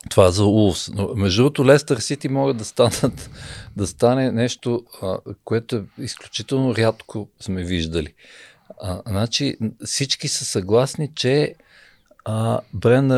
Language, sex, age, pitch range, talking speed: Bulgarian, male, 50-69, 100-130 Hz, 120 wpm